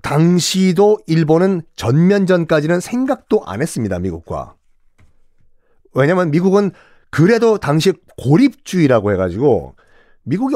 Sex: male